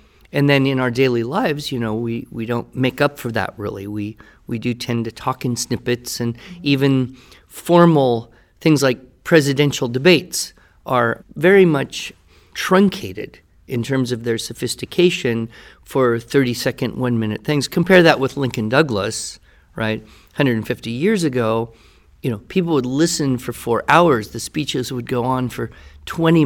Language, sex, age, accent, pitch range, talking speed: English, male, 50-69, American, 115-140 Hz, 150 wpm